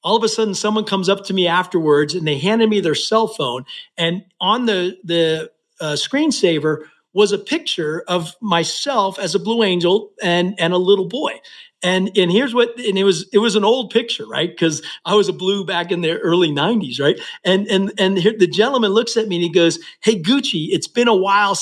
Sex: male